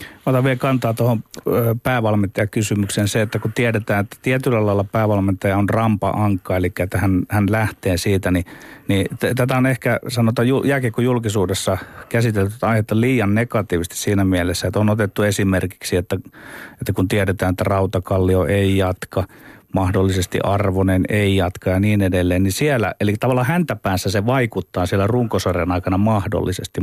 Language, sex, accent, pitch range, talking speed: Finnish, male, native, 95-115 Hz, 150 wpm